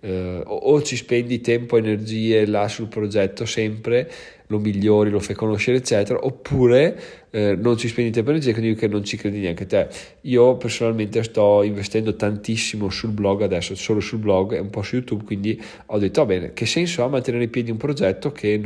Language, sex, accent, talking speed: Italian, male, native, 205 wpm